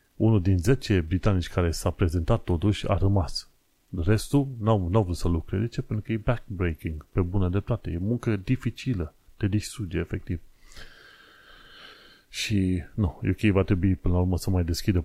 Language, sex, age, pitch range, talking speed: Romanian, male, 30-49, 90-105 Hz, 160 wpm